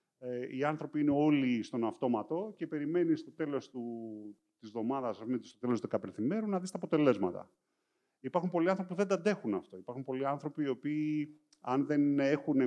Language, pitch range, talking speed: Greek, 115-165 Hz, 175 wpm